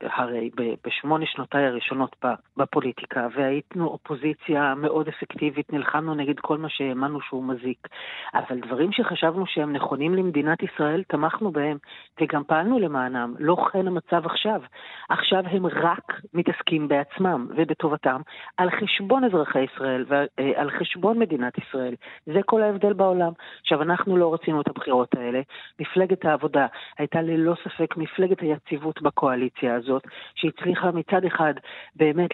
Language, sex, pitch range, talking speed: English, female, 140-175 Hz, 130 wpm